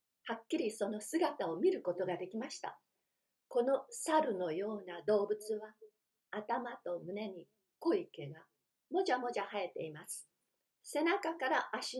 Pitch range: 220-335 Hz